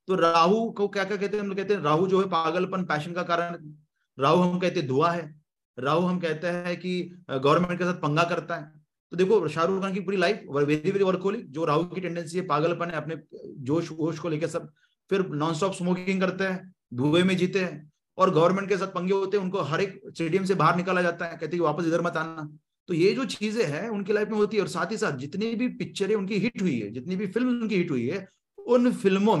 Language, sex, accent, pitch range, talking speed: Hindi, male, native, 155-195 Hz, 165 wpm